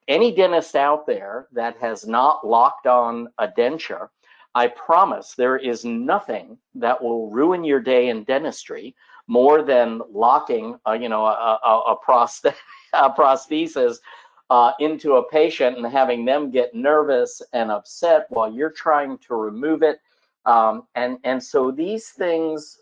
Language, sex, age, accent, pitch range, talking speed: English, male, 50-69, American, 120-165 Hz, 155 wpm